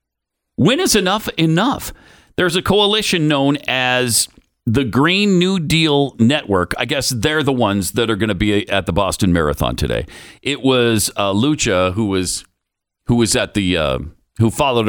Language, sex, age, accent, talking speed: English, male, 50-69, American, 170 wpm